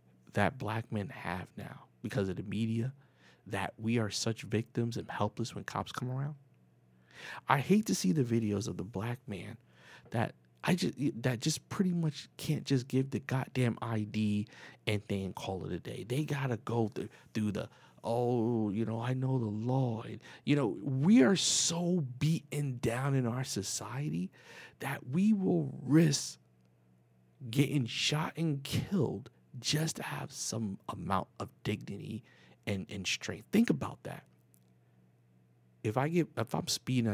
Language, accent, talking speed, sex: English, American, 160 wpm, male